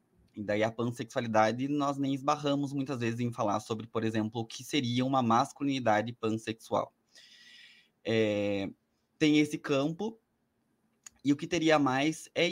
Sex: male